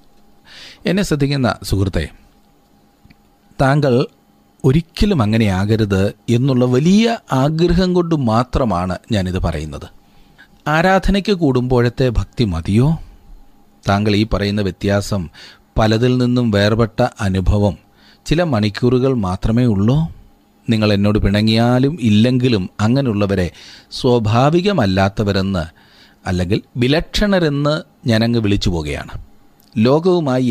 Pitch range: 100-140 Hz